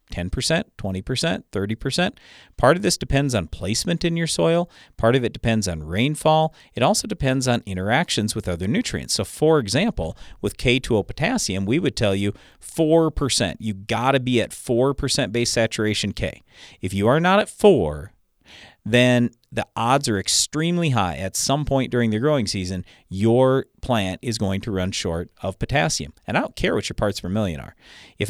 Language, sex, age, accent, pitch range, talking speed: English, male, 40-59, American, 100-140 Hz, 180 wpm